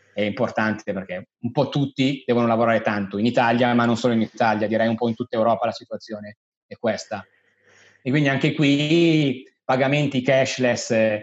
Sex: male